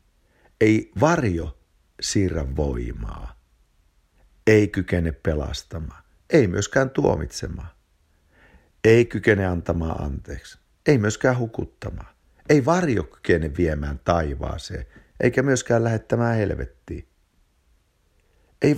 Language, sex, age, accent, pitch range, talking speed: Finnish, male, 60-79, native, 75-120 Hz, 85 wpm